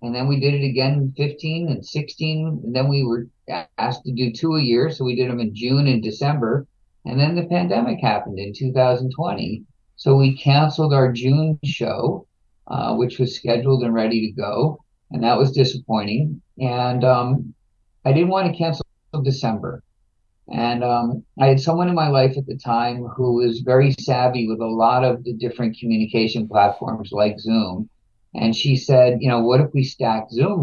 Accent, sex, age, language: American, male, 50-69, English